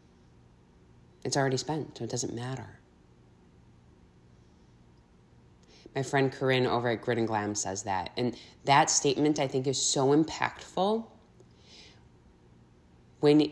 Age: 20-39